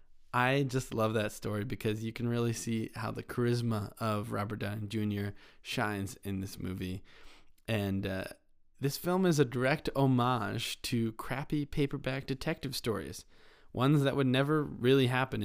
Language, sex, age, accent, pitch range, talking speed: English, male, 20-39, American, 105-140 Hz, 155 wpm